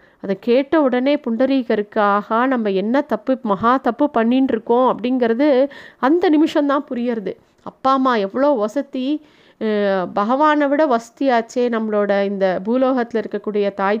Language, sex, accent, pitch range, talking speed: Tamil, female, native, 220-275 Hz, 115 wpm